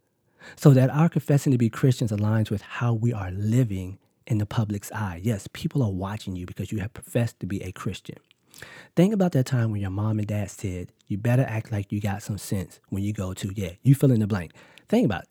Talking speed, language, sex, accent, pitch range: 235 wpm, English, male, American, 100-135 Hz